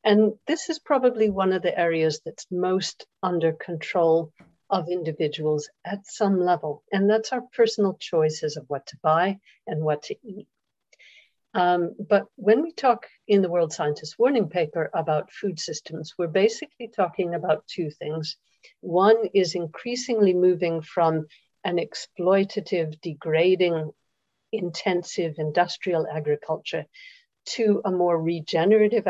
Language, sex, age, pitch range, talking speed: English, female, 50-69, 165-210 Hz, 135 wpm